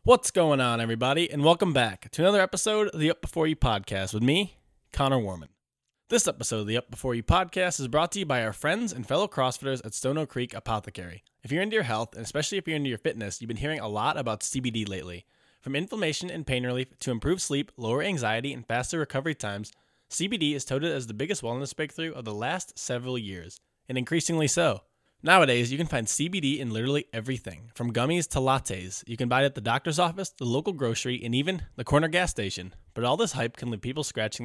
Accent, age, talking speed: American, 20-39, 225 wpm